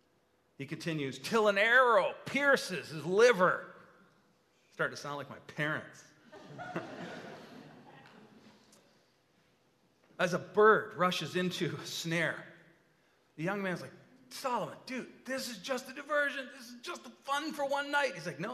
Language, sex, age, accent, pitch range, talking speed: English, male, 40-59, American, 165-255 Hz, 140 wpm